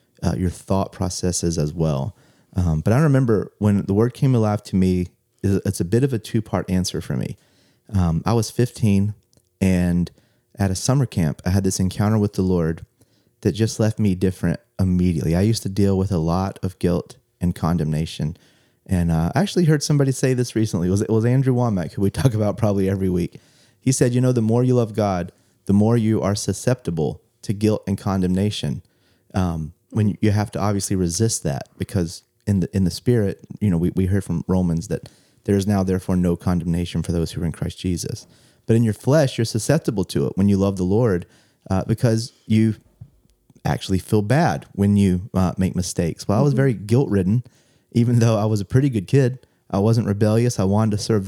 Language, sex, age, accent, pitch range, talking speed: English, male, 30-49, American, 90-115 Hz, 210 wpm